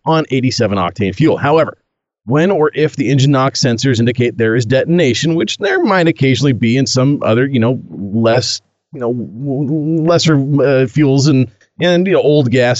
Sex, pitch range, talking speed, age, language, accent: male, 125-175 Hz, 180 wpm, 30-49, English, American